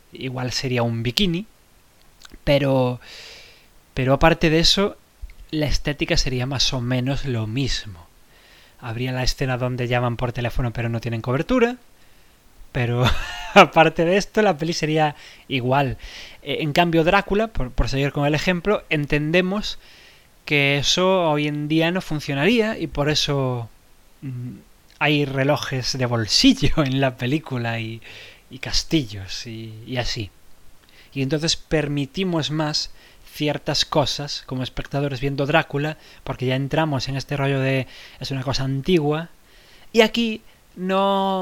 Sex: male